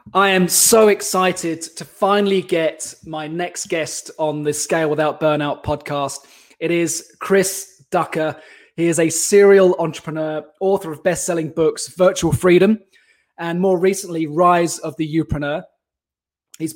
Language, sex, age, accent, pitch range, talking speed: English, male, 20-39, British, 155-190 Hz, 140 wpm